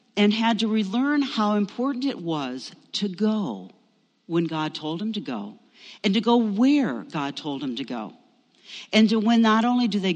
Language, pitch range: English, 165-240 Hz